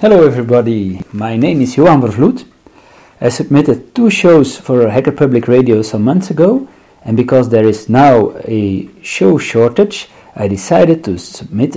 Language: English